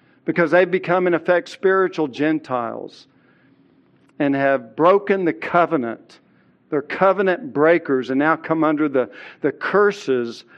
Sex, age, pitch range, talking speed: male, 50-69, 155-205 Hz, 125 wpm